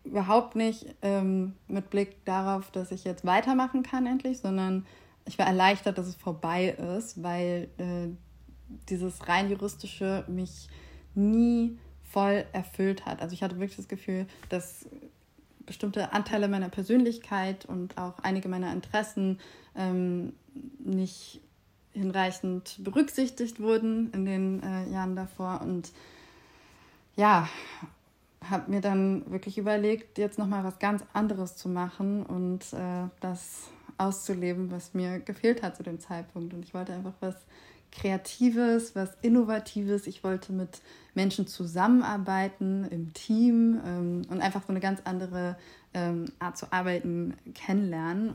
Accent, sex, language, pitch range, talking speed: German, female, German, 180-205 Hz, 135 wpm